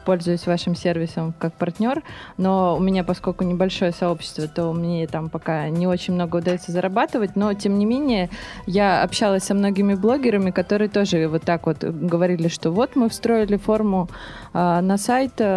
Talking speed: 160 wpm